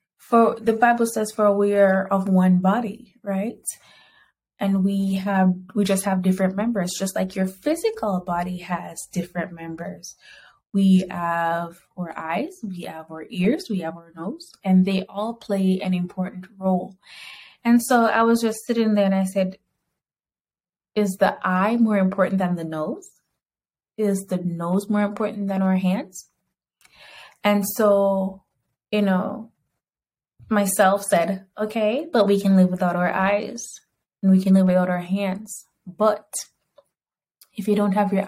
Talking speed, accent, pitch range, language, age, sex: 155 wpm, American, 180-205 Hz, English, 20-39, female